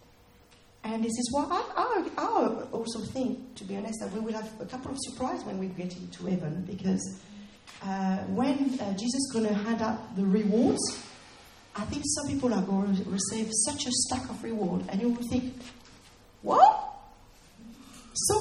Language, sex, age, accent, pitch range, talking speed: English, female, 40-59, French, 190-255 Hz, 175 wpm